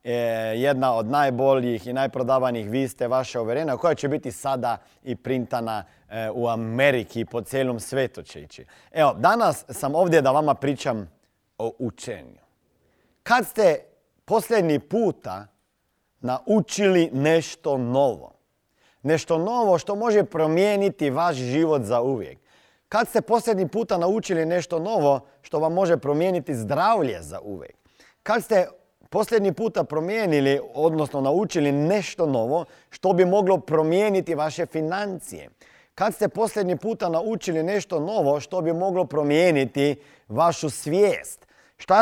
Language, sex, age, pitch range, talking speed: Croatian, male, 40-59, 135-190 Hz, 130 wpm